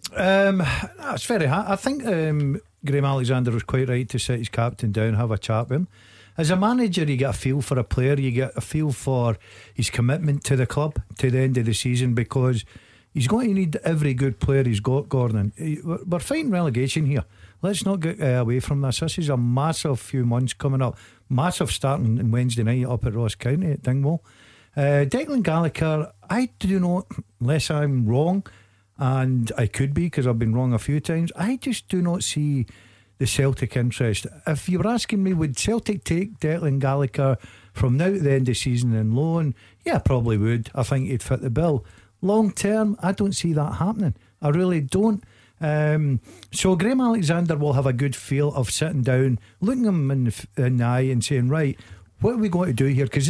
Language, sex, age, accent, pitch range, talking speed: English, male, 50-69, British, 120-165 Hz, 205 wpm